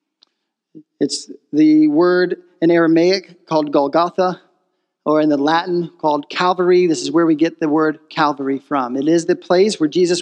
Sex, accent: male, American